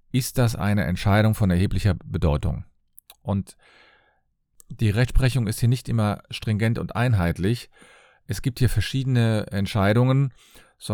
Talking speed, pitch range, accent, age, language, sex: 125 wpm, 100-120 Hz, German, 40-59, German, male